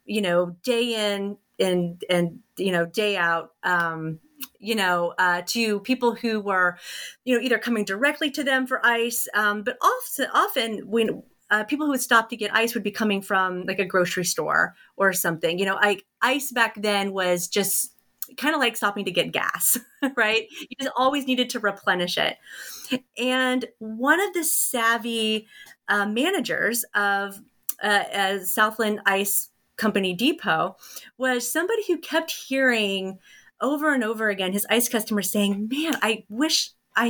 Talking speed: 170 wpm